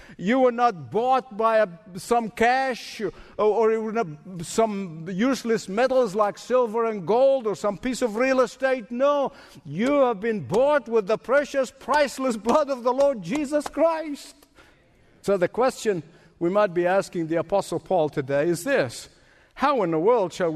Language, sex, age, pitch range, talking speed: English, male, 60-79, 170-255 Hz, 165 wpm